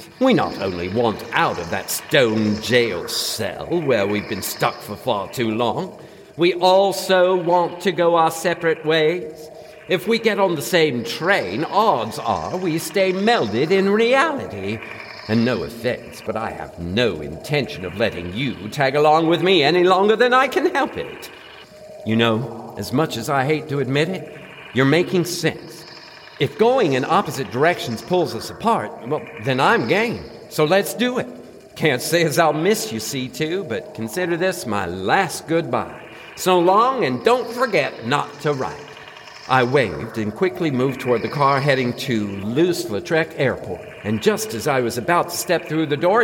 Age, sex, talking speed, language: 50-69, male, 175 wpm, English